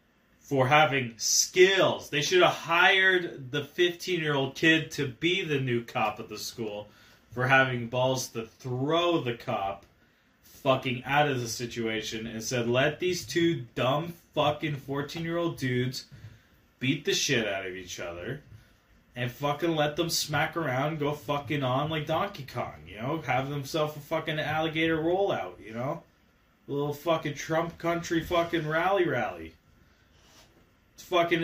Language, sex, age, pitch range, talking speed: English, male, 20-39, 120-165 Hz, 150 wpm